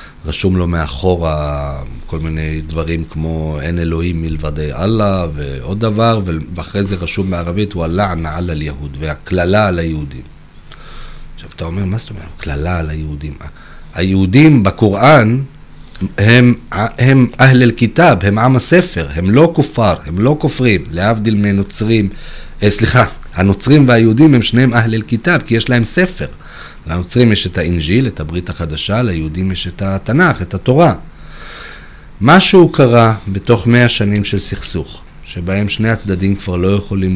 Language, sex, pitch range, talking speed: Hebrew, male, 85-115 Hz, 140 wpm